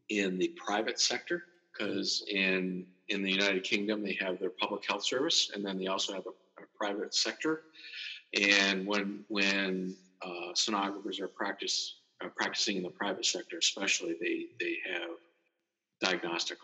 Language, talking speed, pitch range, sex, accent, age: English, 155 wpm, 95-145 Hz, male, American, 50-69